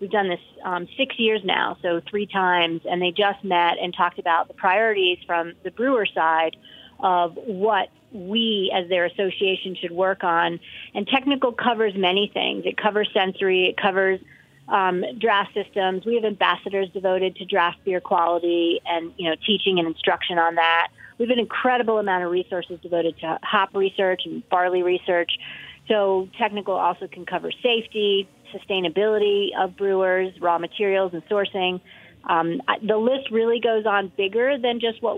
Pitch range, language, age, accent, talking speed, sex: 175-205 Hz, English, 30-49, American, 165 wpm, female